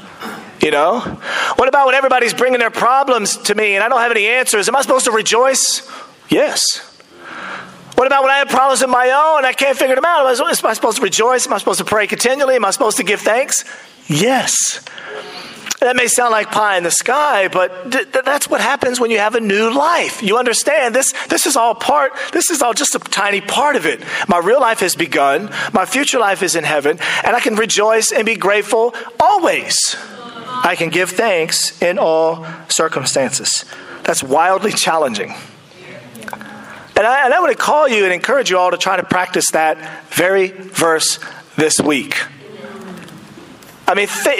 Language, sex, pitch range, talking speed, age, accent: English, male, 180-255 Hz, 195 wpm, 40-59, American